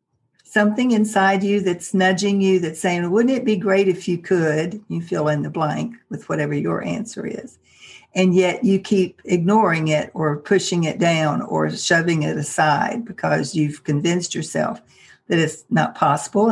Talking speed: 170 wpm